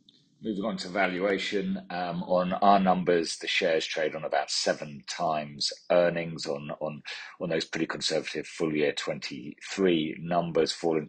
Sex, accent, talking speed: male, British, 145 wpm